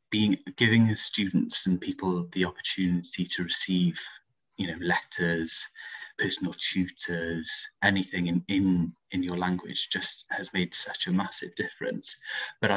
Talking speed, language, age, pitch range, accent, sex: 135 wpm, English, 20-39, 90-100 Hz, British, male